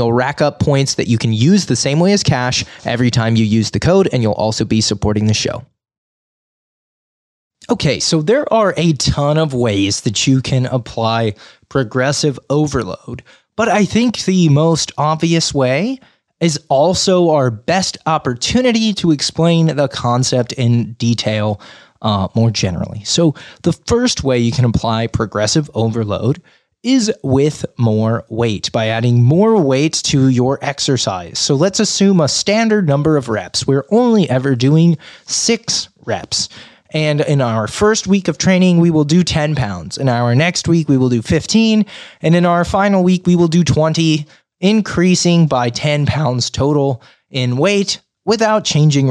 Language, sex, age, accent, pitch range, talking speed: English, male, 20-39, American, 120-175 Hz, 165 wpm